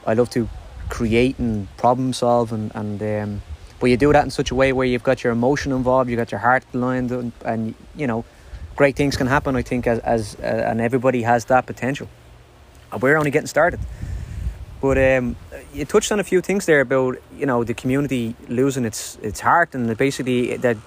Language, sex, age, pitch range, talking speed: English, male, 20-39, 115-135 Hz, 215 wpm